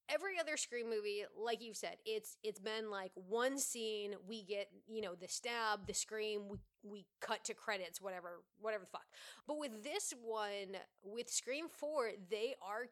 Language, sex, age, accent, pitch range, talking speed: English, female, 20-39, American, 200-250 Hz, 180 wpm